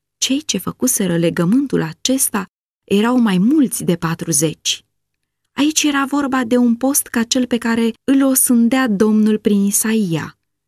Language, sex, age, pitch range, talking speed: Romanian, female, 20-39, 200-265 Hz, 140 wpm